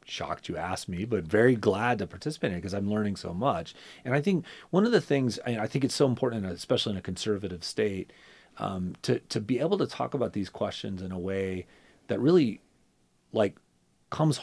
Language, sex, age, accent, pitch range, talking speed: English, male, 30-49, American, 85-115 Hz, 210 wpm